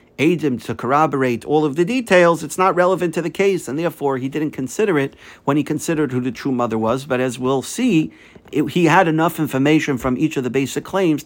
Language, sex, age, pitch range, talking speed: English, male, 50-69, 125-165 Hz, 230 wpm